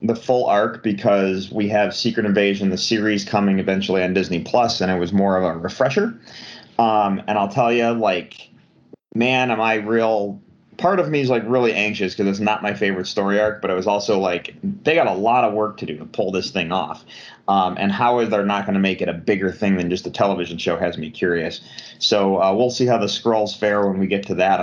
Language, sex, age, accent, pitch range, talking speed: English, male, 30-49, American, 100-115 Hz, 235 wpm